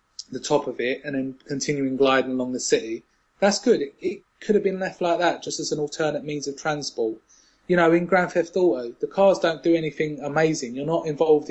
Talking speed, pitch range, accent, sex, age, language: 225 wpm, 140-170 Hz, British, male, 20-39, English